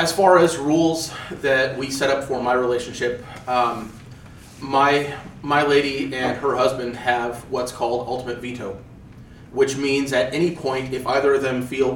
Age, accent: 30-49, American